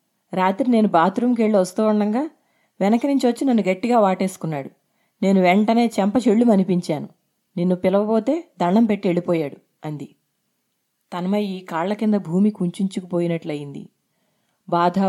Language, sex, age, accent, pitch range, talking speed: Telugu, female, 30-49, native, 175-220 Hz, 115 wpm